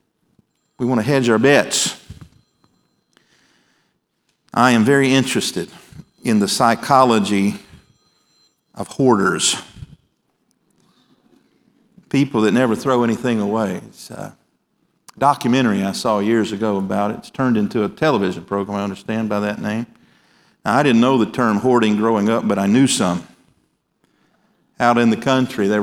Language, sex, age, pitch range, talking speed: English, male, 50-69, 105-135 Hz, 135 wpm